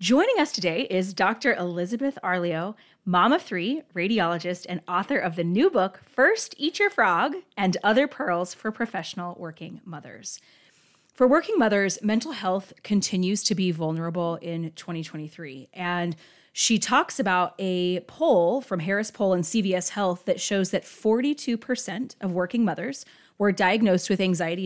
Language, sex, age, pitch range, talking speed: English, female, 30-49, 180-245 Hz, 150 wpm